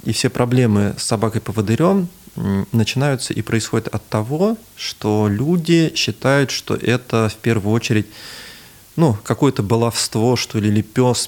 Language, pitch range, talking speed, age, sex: Russian, 105-125 Hz, 140 wpm, 20-39, male